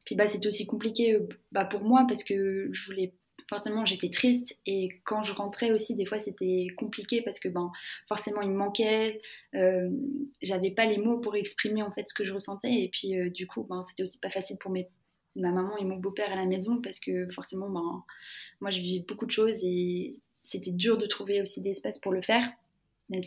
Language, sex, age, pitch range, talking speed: French, female, 20-39, 190-225 Hz, 220 wpm